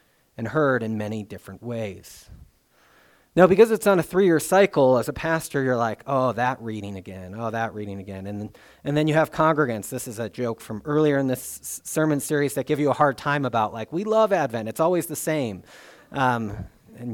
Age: 40-59